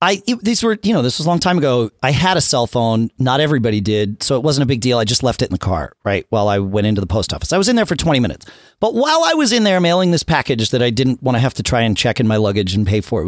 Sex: male